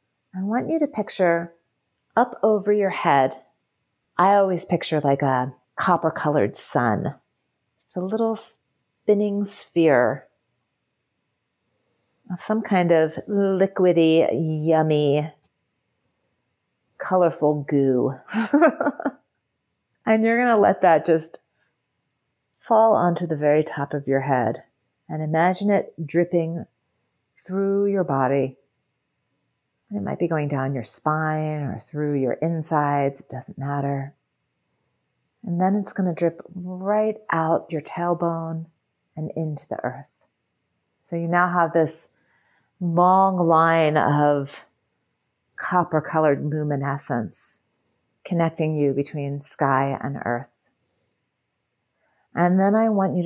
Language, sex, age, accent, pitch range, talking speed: English, female, 40-59, American, 145-180 Hz, 115 wpm